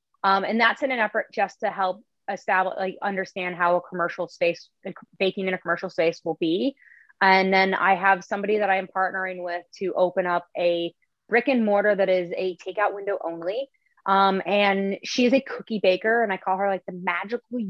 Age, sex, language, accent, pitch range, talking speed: 20-39, female, English, American, 175-205 Hz, 205 wpm